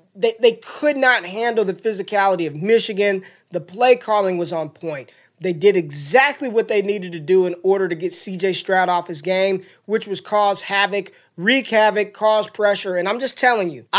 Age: 20-39